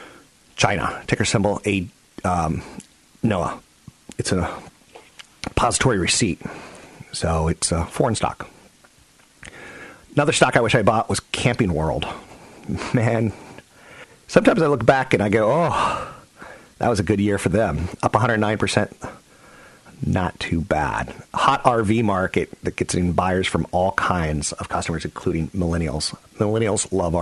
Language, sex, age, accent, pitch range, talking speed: English, male, 40-59, American, 85-105 Hz, 135 wpm